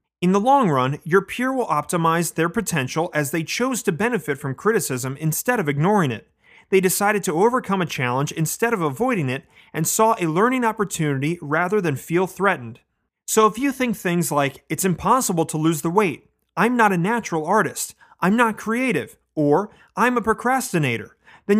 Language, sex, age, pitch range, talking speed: English, male, 30-49, 150-220 Hz, 180 wpm